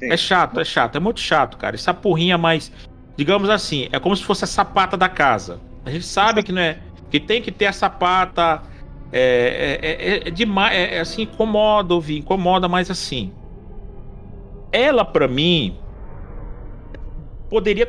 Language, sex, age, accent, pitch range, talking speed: Portuguese, male, 40-59, Brazilian, 120-185 Hz, 160 wpm